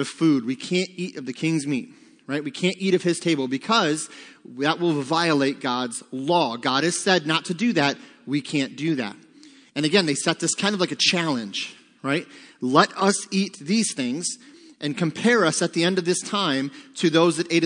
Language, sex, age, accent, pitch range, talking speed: English, male, 30-49, American, 150-200 Hz, 210 wpm